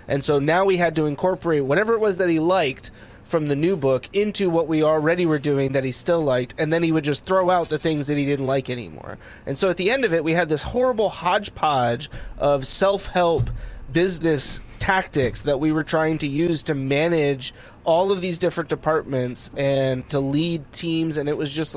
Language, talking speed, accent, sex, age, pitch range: English, 215 wpm, American, male, 20-39, 140-170 Hz